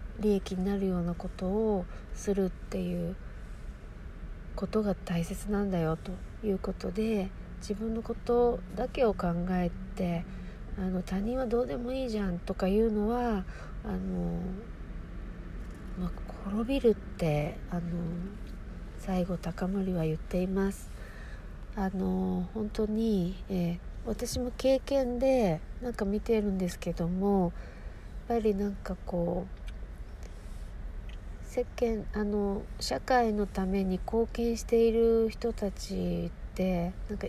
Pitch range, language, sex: 175-220 Hz, Japanese, female